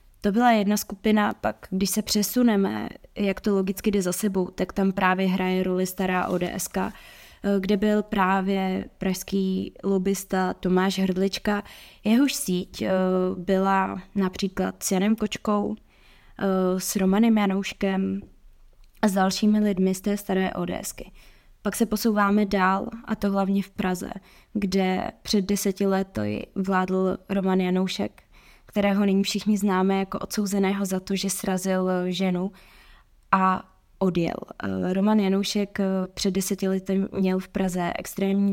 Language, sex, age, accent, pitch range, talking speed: Czech, female, 20-39, native, 185-200 Hz, 130 wpm